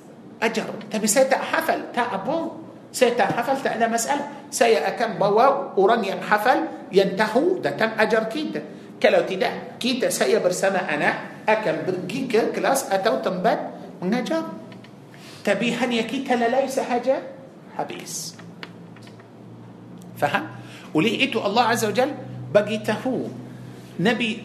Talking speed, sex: 125 wpm, male